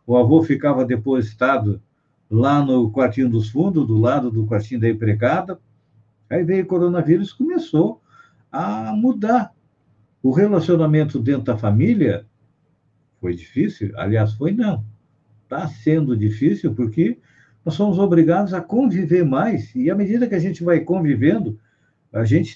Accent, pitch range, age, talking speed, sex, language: Brazilian, 115-175 Hz, 50-69, 140 wpm, male, Portuguese